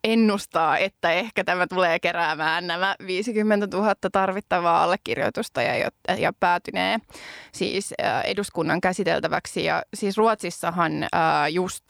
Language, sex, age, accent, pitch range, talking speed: Finnish, female, 20-39, native, 170-210 Hz, 105 wpm